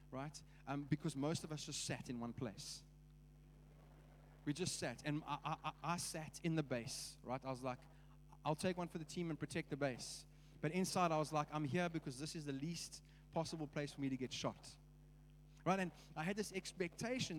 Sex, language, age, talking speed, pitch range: male, English, 30-49, 210 wpm, 145-170 Hz